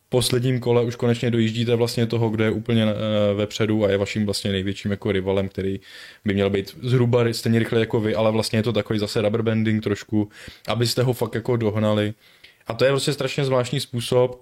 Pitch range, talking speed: 105-120 Hz, 215 wpm